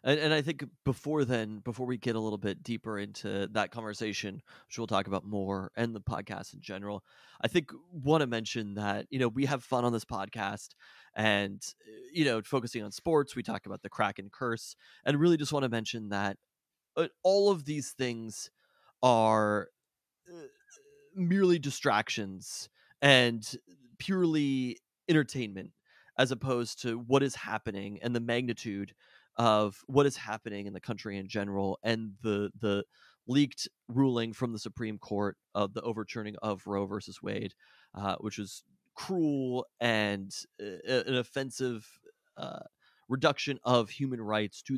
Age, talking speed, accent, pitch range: 20-39, 160 wpm, American, 105-135 Hz